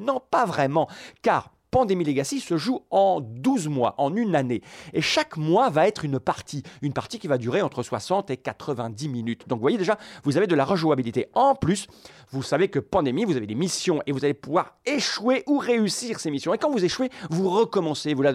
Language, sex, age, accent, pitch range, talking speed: French, male, 40-59, French, 150-230 Hz, 215 wpm